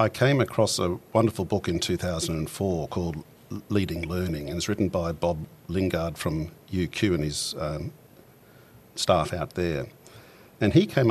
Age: 50-69